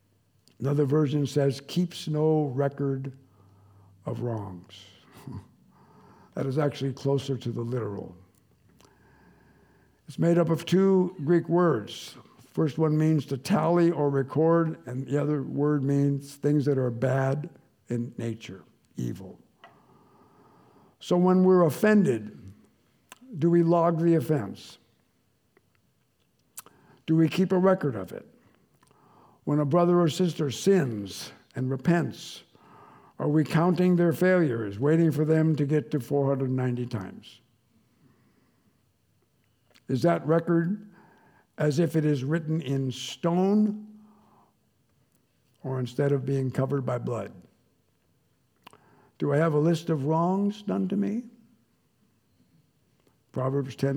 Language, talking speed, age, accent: English, 120 wpm, 60-79, American